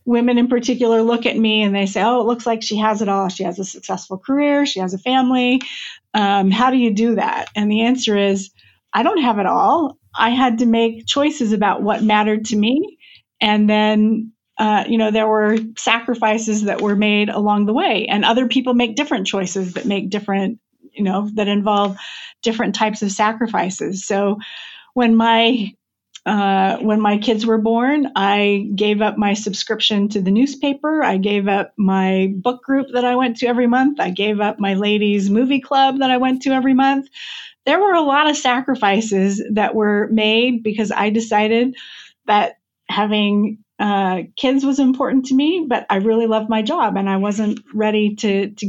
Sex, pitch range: female, 205-245 Hz